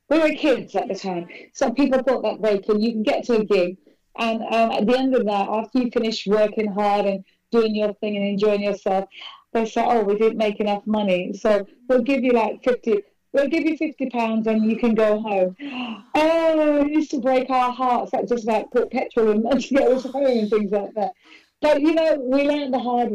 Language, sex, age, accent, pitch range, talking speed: English, female, 40-59, British, 210-255 Hz, 225 wpm